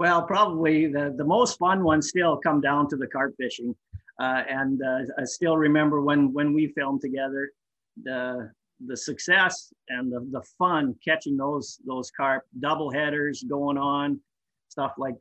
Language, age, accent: English, 50-69, American